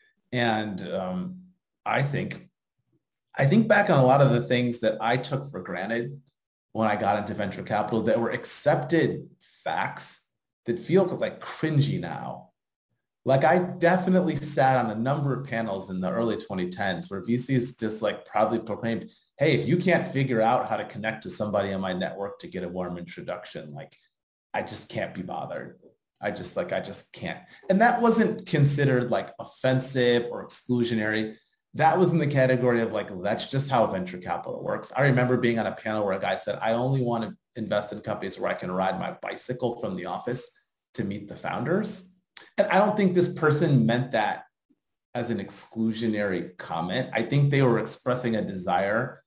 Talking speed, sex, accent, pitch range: 185 wpm, male, American, 110-165 Hz